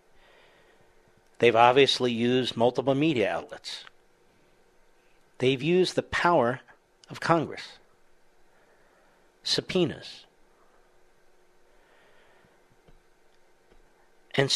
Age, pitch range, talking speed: 60-79, 120-180 Hz, 60 wpm